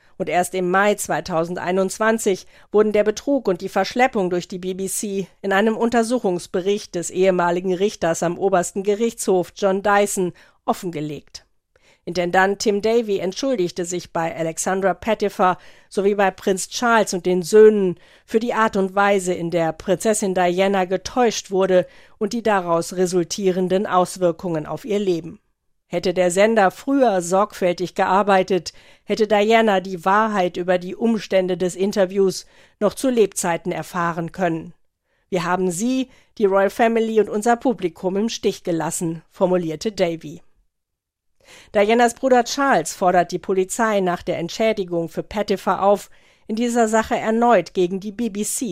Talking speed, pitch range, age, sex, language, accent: 140 wpm, 180-215 Hz, 50-69, female, German, German